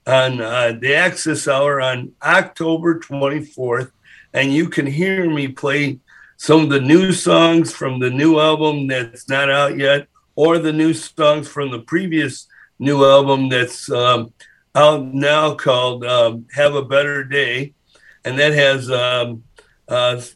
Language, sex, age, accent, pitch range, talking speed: English, male, 50-69, American, 130-150 Hz, 150 wpm